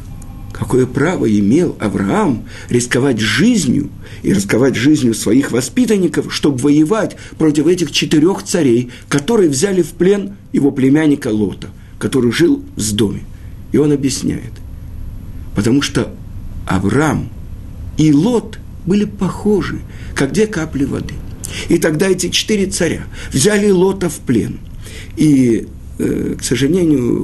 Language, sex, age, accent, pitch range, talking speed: Russian, male, 50-69, native, 110-175 Hz, 120 wpm